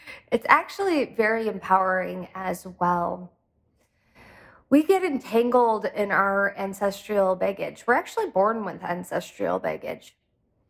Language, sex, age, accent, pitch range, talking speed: English, female, 20-39, American, 195-250 Hz, 105 wpm